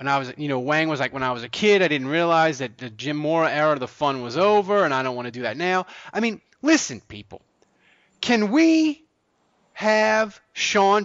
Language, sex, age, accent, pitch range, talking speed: English, male, 30-49, American, 145-200 Hz, 225 wpm